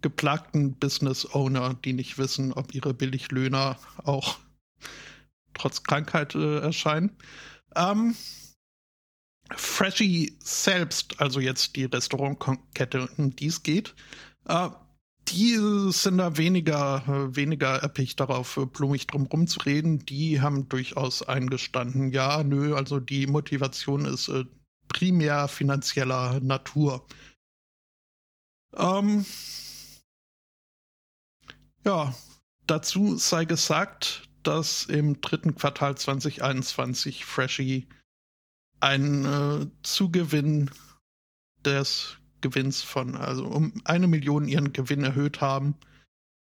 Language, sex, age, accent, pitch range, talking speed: German, male, 60-79, German, 130-150 Hz, 100 wpm